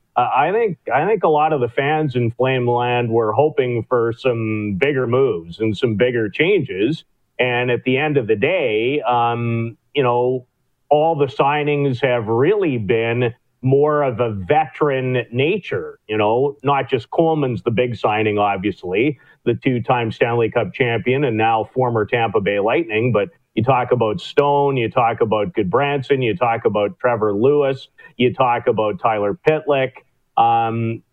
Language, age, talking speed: English, 40-59, 160 wpm